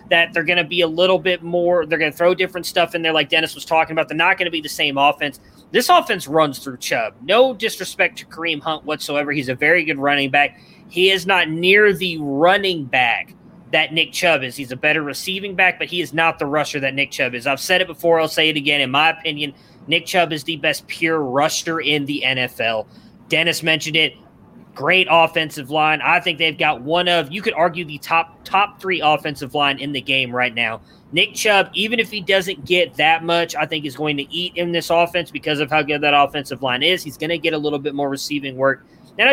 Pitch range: 145-180 Hz